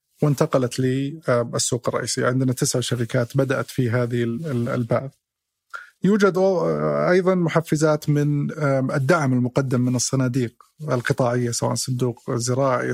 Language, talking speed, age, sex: Arabic, 100 wpm, 30-49, male